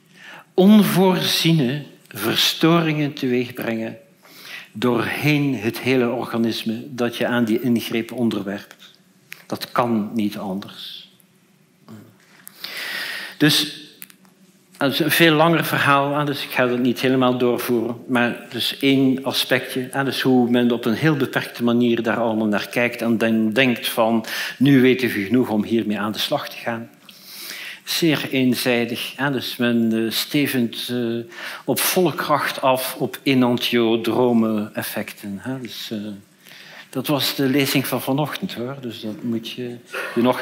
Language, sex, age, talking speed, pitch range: Dutch, male, 60-79, 135 wpm, 115-150 Hz